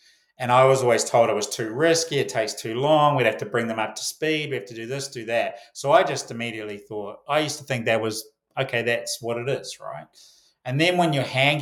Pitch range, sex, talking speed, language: 110-140 Hz, male, 260 wpm, English